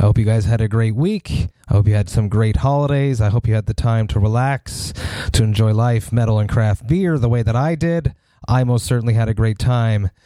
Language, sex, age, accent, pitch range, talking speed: English, male, 30-49, American, 110-130 Hz, 245 wpm